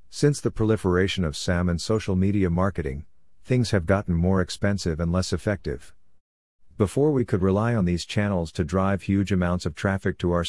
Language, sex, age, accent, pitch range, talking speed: English, male, 50-69, American, 85-105 Hz, 185 wpm